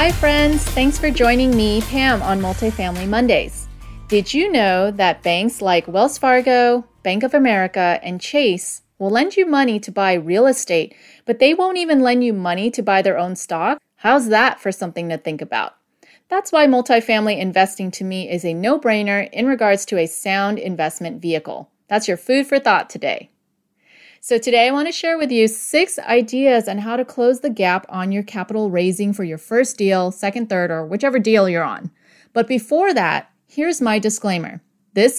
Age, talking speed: 30-49, 190 wpm